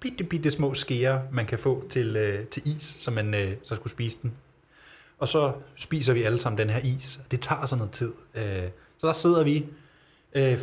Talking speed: 215 wpm